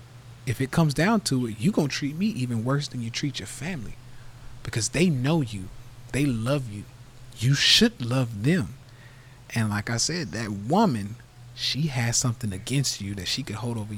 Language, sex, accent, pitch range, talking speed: English, male, American, 120-150 Hz, 195 wpm